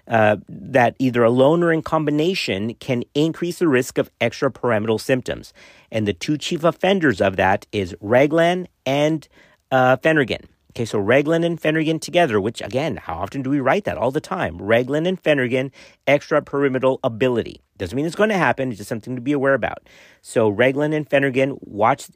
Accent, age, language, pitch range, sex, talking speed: American, 50-69, English, 110-145 Hz, male, 180 wpm